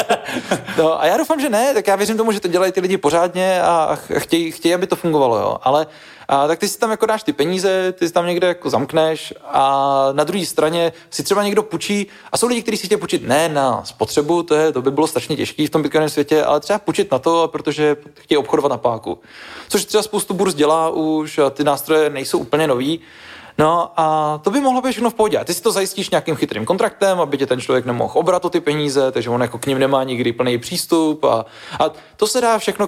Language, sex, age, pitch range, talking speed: Czech, male, 20-39, 145-185 Hz, 235 wpm